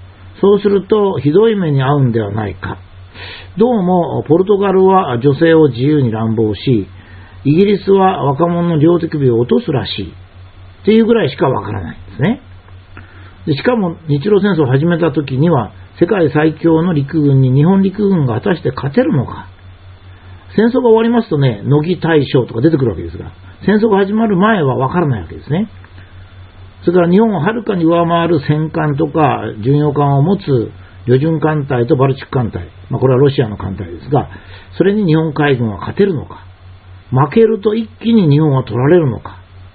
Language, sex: Japanese, male